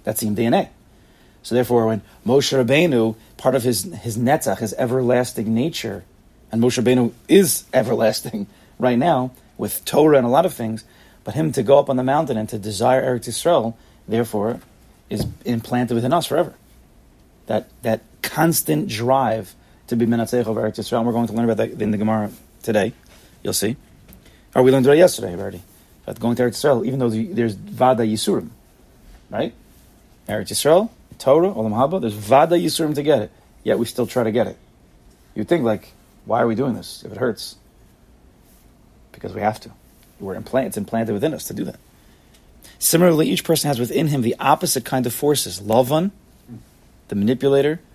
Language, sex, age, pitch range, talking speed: English, male, 30-49, 110-130 Hz, 185 wpm